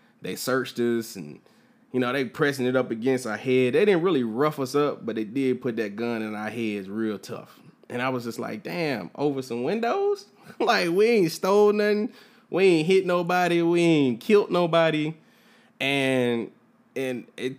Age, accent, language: 20-39, American, English